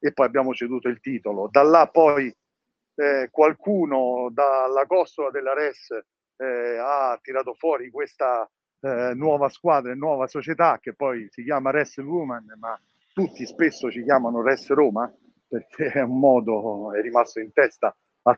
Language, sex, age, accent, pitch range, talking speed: Italian, male, 50-69, native, 120-145 Hz, 155 wpm